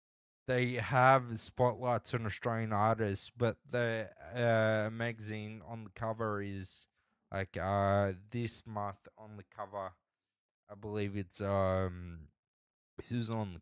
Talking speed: 125 wpm